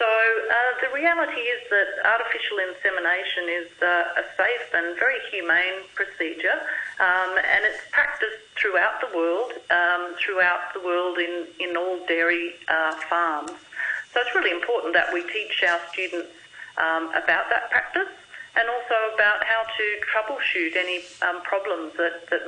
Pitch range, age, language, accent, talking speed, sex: 170-215 Hz, 50-69, English, Australian, 150 wpm, female